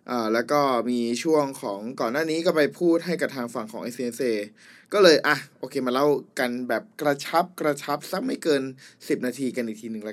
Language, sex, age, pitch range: Thai, male, 20-39, 130-165 Hz